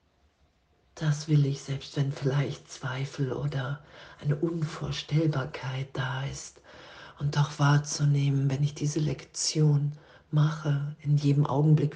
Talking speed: 115 wpm